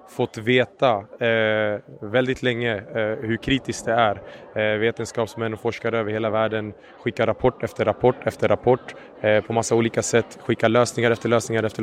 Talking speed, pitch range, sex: 145 wpm, 110-125 Hz, male